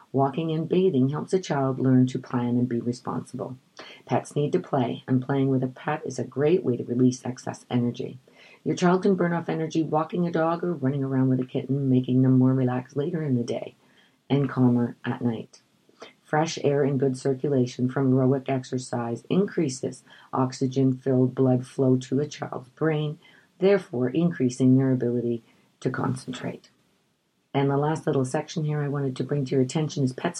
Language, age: English, 40-59